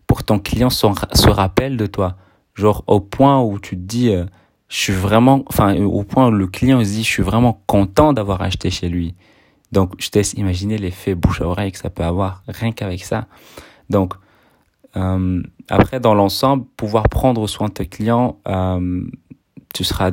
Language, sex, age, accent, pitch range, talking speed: French, male, 30-49, French, 95-115 Hz, 195 wpm